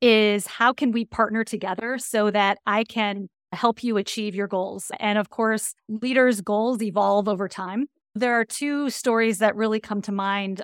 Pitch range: 205-235 Hz